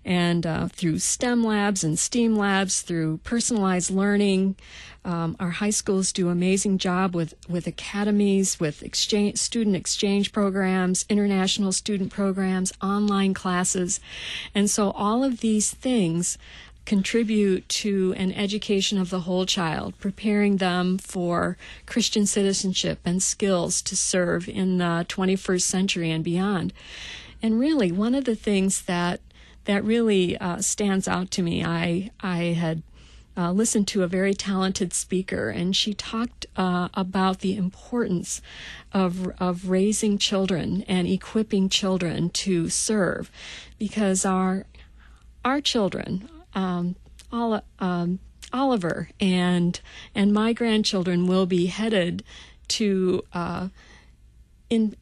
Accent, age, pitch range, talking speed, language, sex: American, 50-69, 180-205 Hz, 130 wpm, English, female